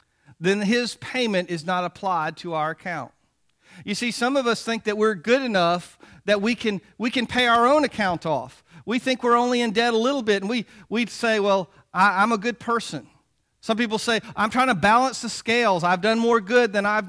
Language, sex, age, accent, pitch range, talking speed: English, male, 40-59, American, 150-225 Hz, 210 wpm